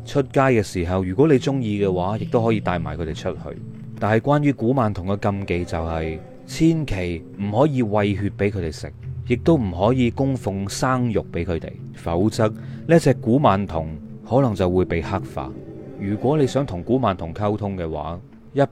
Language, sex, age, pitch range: Chinese, male, 30-49, 90-130 Hz